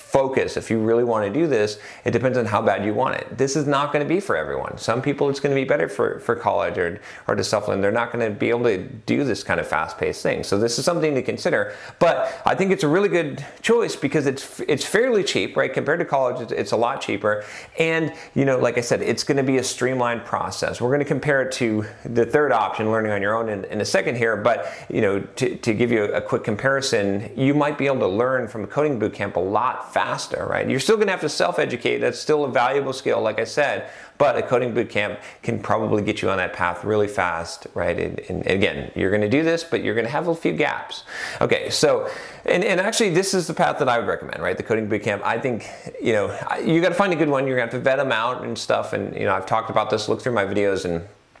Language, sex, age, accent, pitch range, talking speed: English, male, 30-49, American, 105-150 Hz, 260 wpm